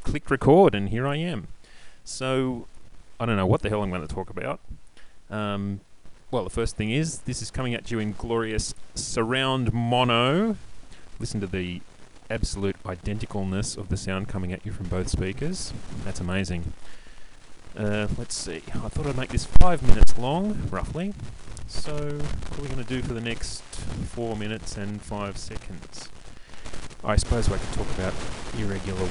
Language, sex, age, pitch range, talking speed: English, male, 30-49, 95-120 Hz, 170 wpm